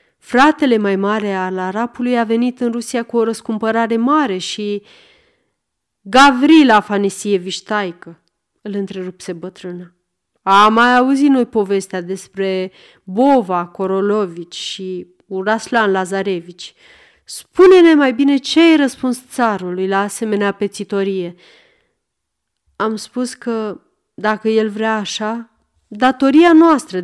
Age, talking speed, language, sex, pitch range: 30-49, 110 wpm, Romanian, female, 195-260 Hz